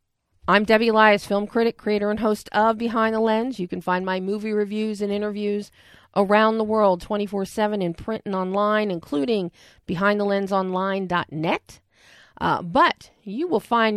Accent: American